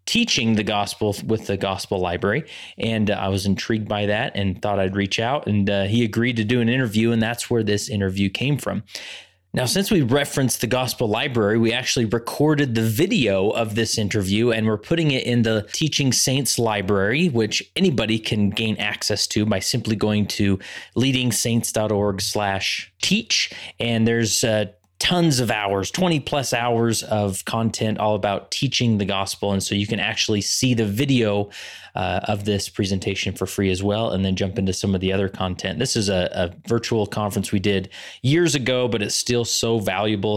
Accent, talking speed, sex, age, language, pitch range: American, 190 wpm, male, 30-49, English, 100-125 Hz